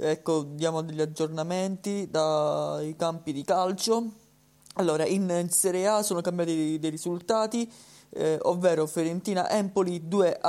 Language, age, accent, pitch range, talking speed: Italian, 20-39, native, 155-185 Hz, 120 wpm